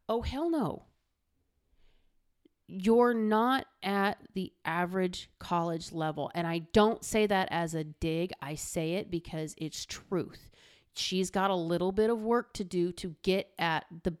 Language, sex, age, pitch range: English, female, 30-49, 170-225 Hz